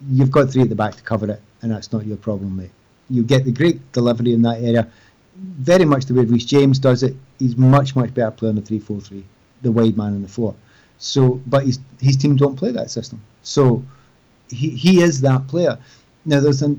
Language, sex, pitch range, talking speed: English, male, 120-150 Hz, 230 wpm